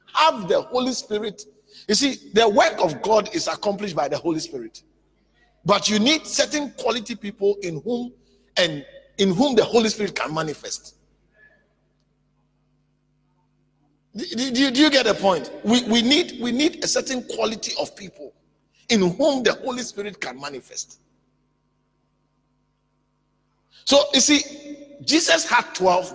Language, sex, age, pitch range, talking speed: English, male, 50-69, 205-295 Hz, 140 wpm